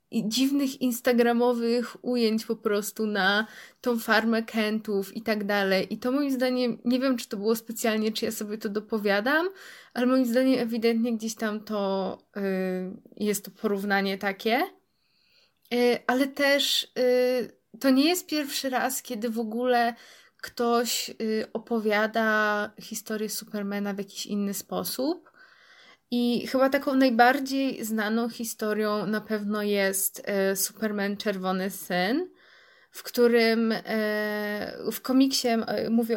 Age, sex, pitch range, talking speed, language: 20-39, female, 210-245 Hz, 130 wpm, Polish